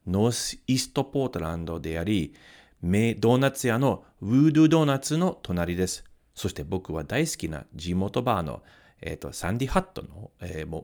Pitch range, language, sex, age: 95-150 Hz, Japanese, male, 40-59